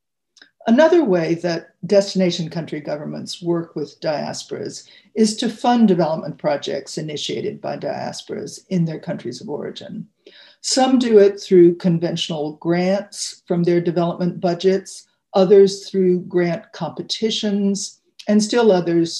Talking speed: 120 wpm